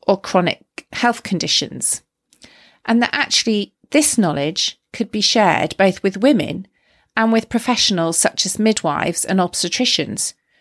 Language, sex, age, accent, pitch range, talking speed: English, female, 40-59, British, 175-240 Hz, 130 wpm